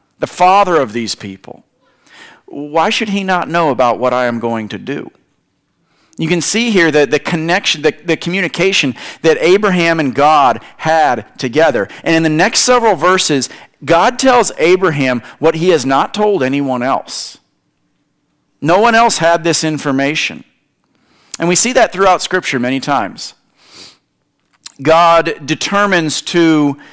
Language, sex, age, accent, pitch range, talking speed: English, male, 40-59, American, 140-180 Hz, 145 wpm